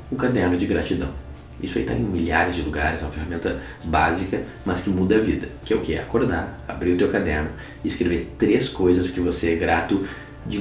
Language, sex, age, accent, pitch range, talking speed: Portuguese, male, 20-39, Brazilian, 75-90 Hz, 220 wpm